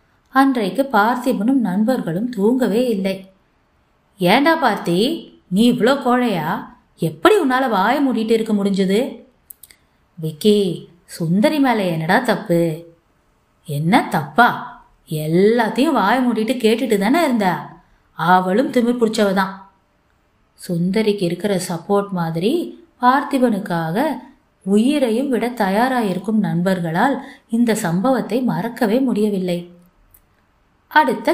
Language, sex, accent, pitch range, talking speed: Tamil, female, native, 185-255 Hz, 85 wpm